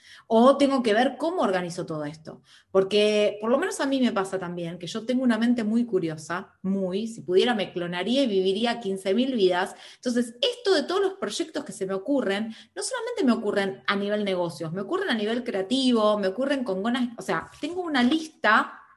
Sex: female